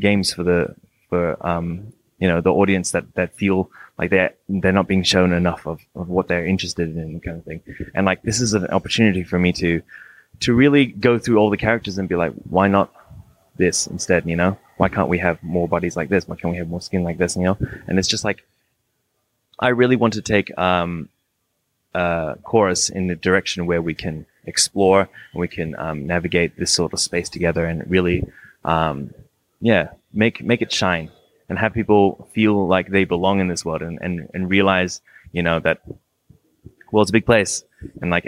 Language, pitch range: English, 85-100 Hz